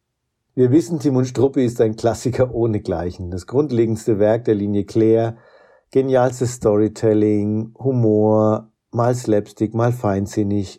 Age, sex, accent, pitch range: 50-69, male, German, 100-120 Hz